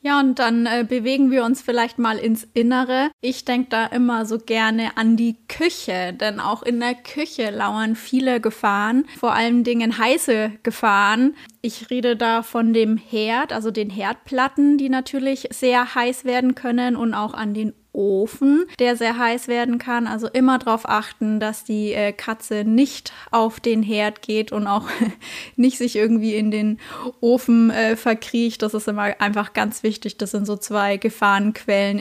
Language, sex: German, female